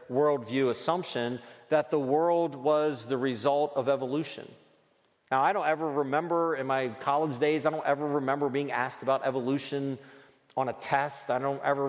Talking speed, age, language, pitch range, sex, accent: 165 wpm, 40-59, English, 135-175 Hz, male, American